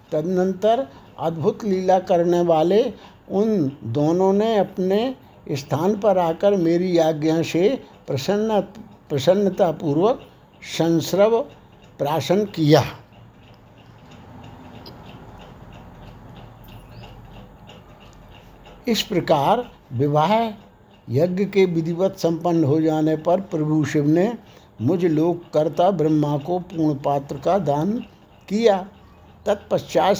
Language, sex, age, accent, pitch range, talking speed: Hindi, male, 60-79, native, 150-190 Hz, 85 wpm